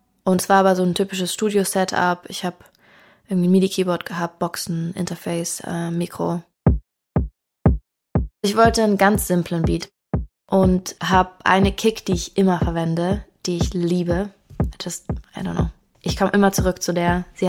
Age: 20-39